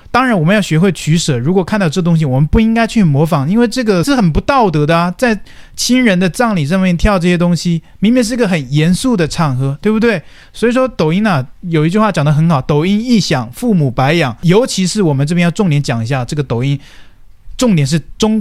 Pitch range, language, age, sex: 150-220 Hz, Chinese, 20-39, male